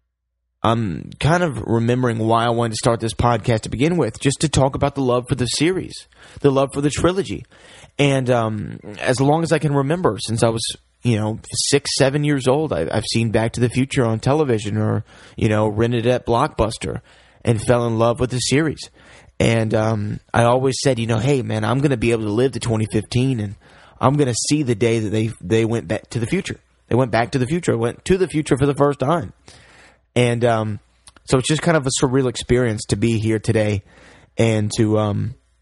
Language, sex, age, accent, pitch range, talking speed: English, male, 20-39, American, 110-130 Hz, 220 wpm